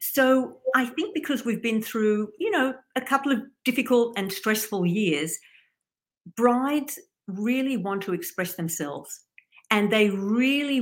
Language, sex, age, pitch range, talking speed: English, female, 50-69, 185-230 Hz, 140 wpm